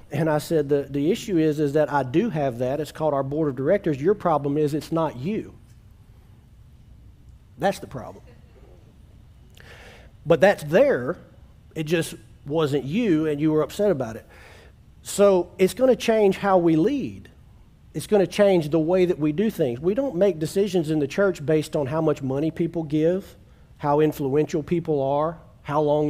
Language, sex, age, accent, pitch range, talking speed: English, male, 40-59, American, 145-175 Hz, 175 wpm